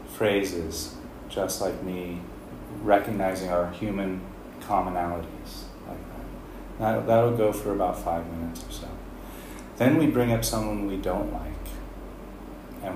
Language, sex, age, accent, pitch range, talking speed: English, male, 30-49, American, 80-100 Hz, 130 wpm